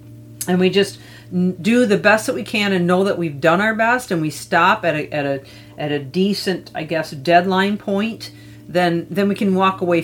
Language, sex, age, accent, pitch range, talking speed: English, female, 40-59, American, 155-205 Hz, 215 wpm